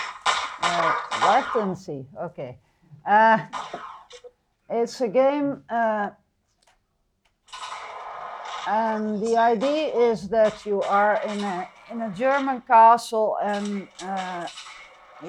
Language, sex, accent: English, female, Dutch